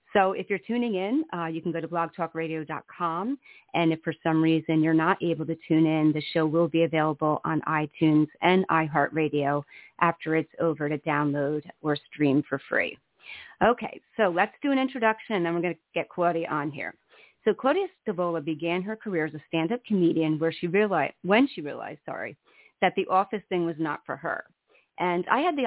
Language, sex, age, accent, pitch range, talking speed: English, female, 30-49, American, 160-190 Hz, 195 wpm